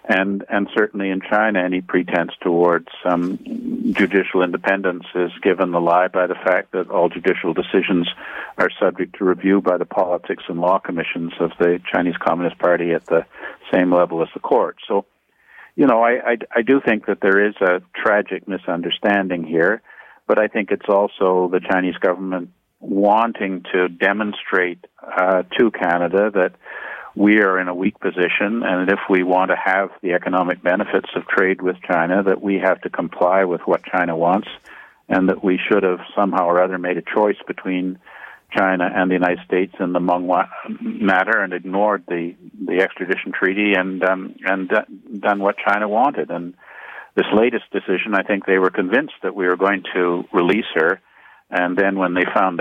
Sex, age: male, 50-69